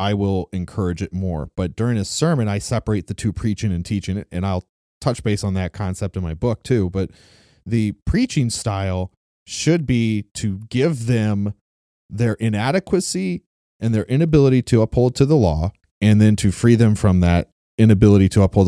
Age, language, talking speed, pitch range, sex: 30-49, English, 180 wpm, 95-125 Hz, male